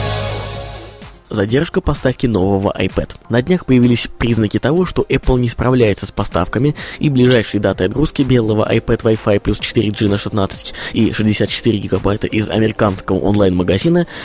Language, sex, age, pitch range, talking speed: Russian, male, 20-39, 105-135 Hz, 135 wpm